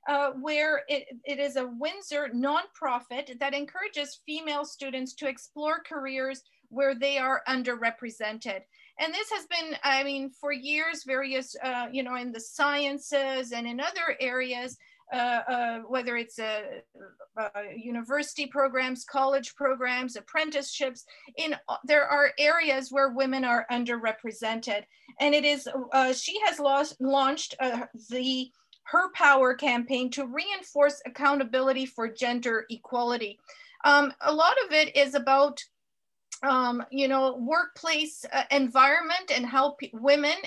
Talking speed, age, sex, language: 140 wpm, 40-59, female, English